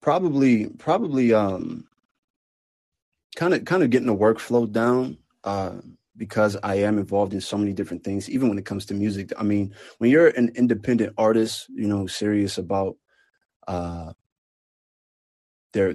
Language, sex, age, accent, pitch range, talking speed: English, male, 30-49, American, 95-105 Hz, 150 wpm